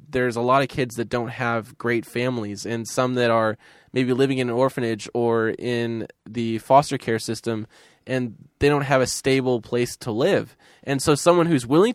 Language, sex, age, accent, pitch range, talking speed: English, male, 10-29, American, 115-140 Hz, 195 wpm